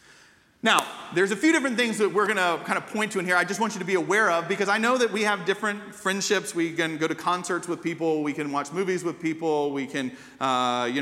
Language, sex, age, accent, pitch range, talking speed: English, male, 40-59, American, 160-205 Hz, 265 wpm